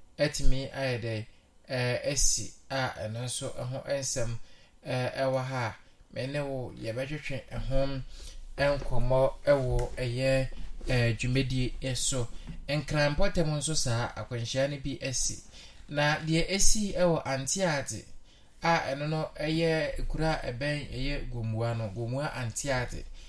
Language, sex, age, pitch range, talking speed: English, male, 20-39, 120-145 Hz, 120 wpm